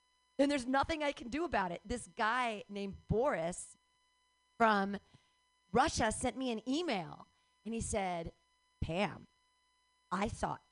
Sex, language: female, English